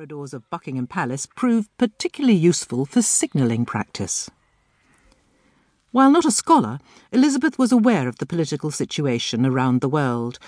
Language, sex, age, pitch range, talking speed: English, female, 50-69, 130-200 Hz, 130 wpm